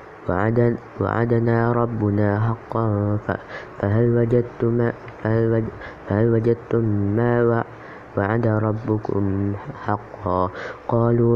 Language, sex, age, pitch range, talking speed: Indonesian, female, 20-39, 105-120 Hz, 55 wpm